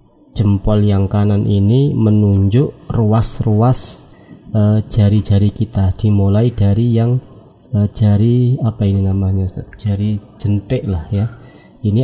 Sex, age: male, 30-49